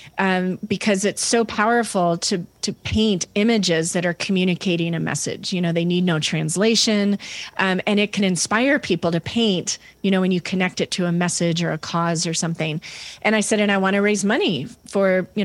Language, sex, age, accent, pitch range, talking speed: English, female, 30-49, American, 180-235 Hz, 205 wpm